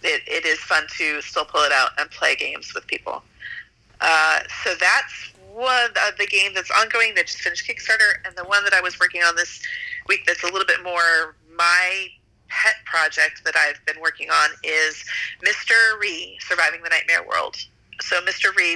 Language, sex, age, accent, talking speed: English, female, 30-49, American, 190 wpm